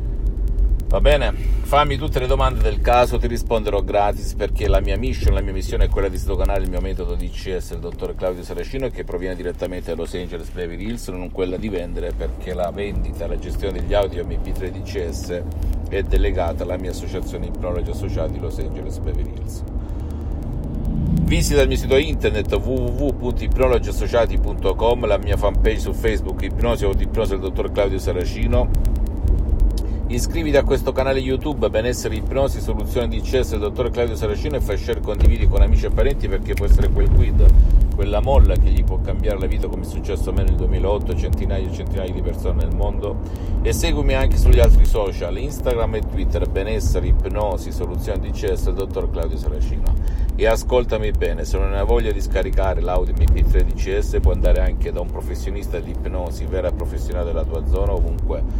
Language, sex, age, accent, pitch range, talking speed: Italian, male, 50-69, native, 80-100 Hz, 175 wpm